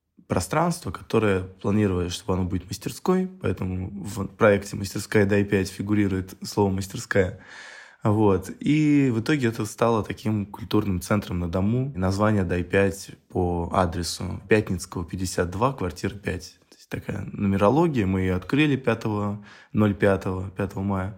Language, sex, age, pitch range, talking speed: Russian, male, 20-39, 90-105 Hz, 130 wpm